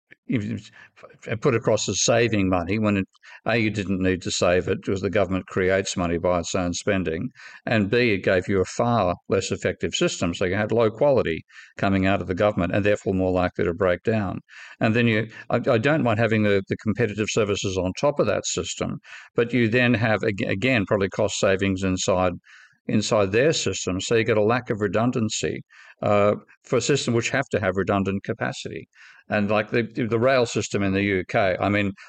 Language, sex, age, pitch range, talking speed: English, male, 50-69, 95-120 Hz, 195 wpm